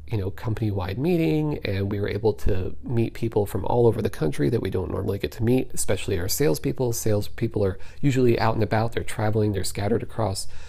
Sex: male